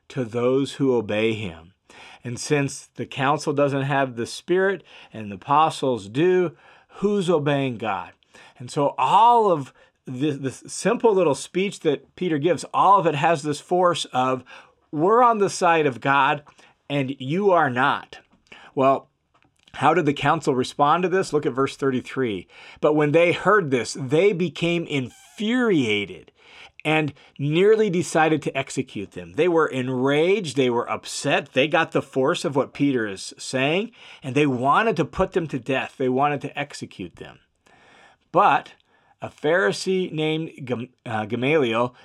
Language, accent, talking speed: English, American, 155 wpm